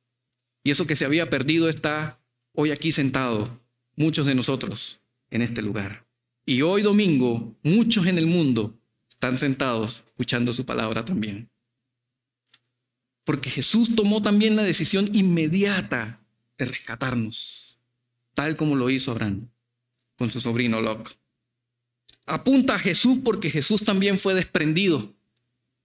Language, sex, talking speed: Spanish, male, 130 wpm